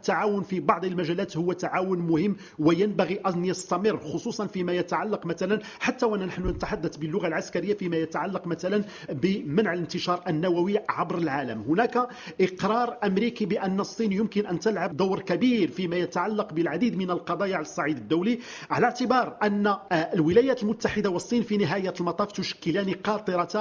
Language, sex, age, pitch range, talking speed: English, male, 50-69, 180-230 Hz, 140 wpm